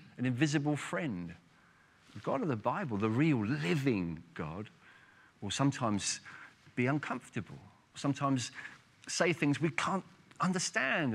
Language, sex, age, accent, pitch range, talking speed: English, male, 40-59, British, 110-150 Hz, 120 wpm